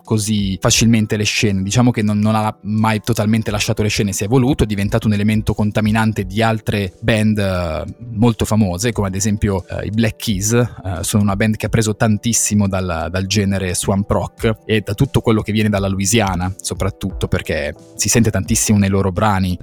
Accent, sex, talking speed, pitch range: native, male, 195 wpm, 100-115 Hz